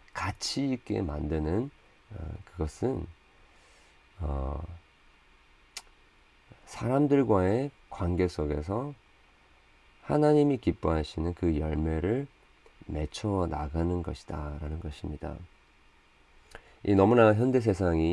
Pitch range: 75-100 Hz